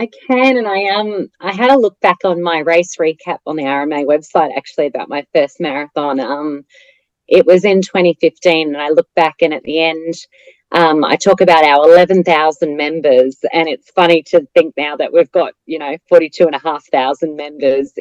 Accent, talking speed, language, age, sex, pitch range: Australian, 205 wpm, English, 30-49, female, 160-195 Hz